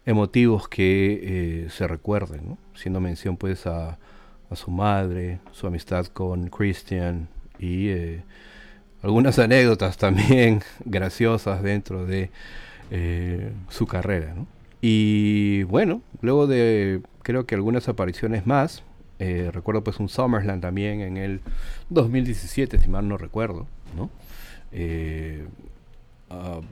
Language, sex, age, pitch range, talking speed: Spanish, male, 40-59, 90-110 Hz, 115 wpm